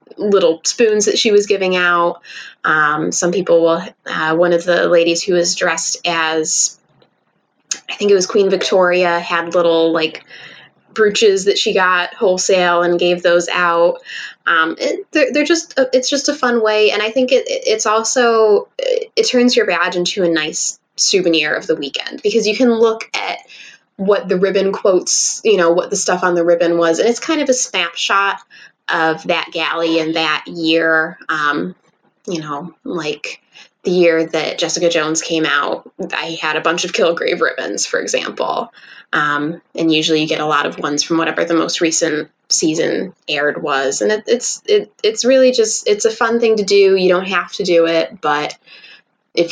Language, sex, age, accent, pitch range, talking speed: English, female, 10-29, American, 165-230 Hz, 190 wpm